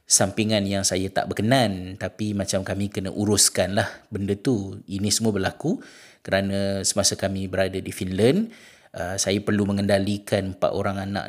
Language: Malay